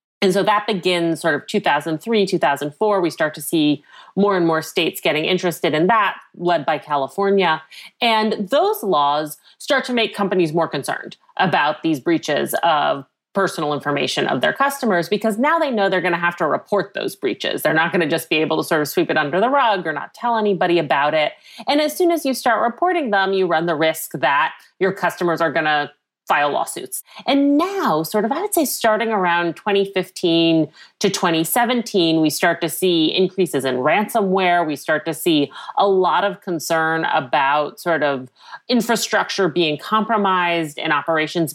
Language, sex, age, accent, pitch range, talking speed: English, female, 30-49, American, 160-205 Hz, 185 wpm